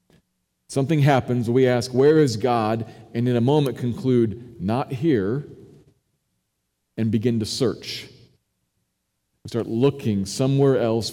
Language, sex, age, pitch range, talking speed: English, male, 40-59, 95-125 Hz, 125 wpm